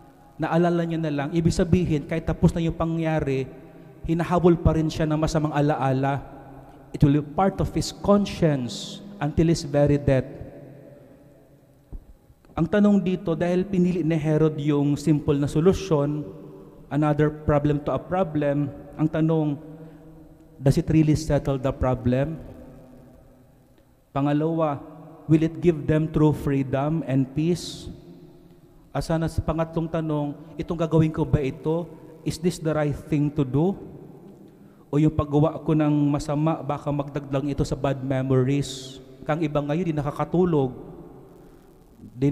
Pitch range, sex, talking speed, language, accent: 145-165 Hz, male, 135 wpm, English, Filipino